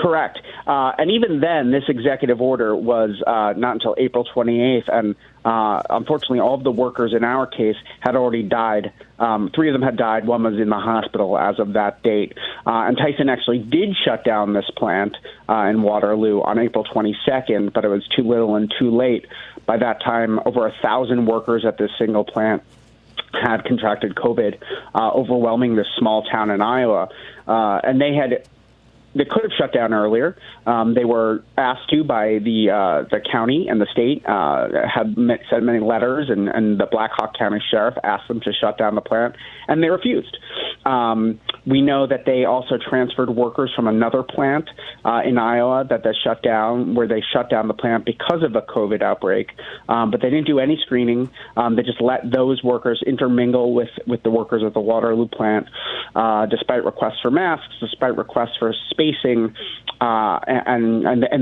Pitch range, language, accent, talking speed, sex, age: 110-130 Hz, English, American, 190 wpm, male, 30-49